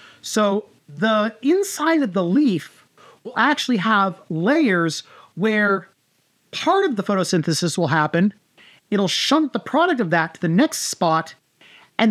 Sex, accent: male, American